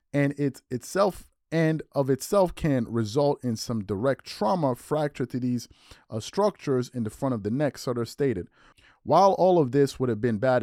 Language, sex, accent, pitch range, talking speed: English, male, American, 120-160 Hz, 185 wpm